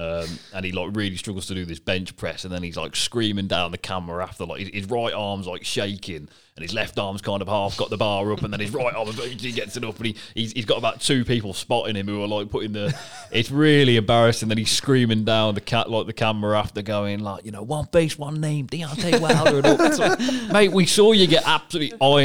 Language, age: English, 30-49